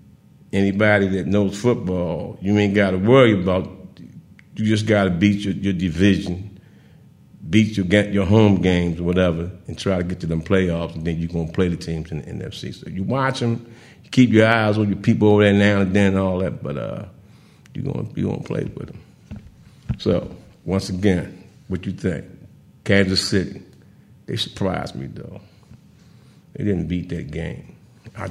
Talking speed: 185 wpm